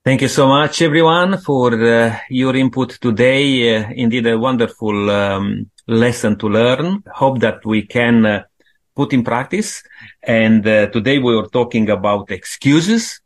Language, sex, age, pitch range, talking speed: English, male, 30-49, 110-135 Hz, 155 wpm